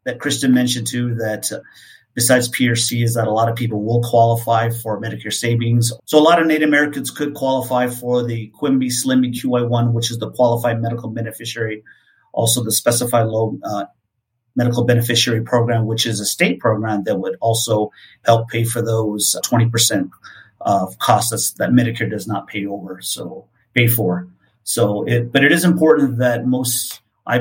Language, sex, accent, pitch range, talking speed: English, male, American, 115-125 Hz, 170 wpm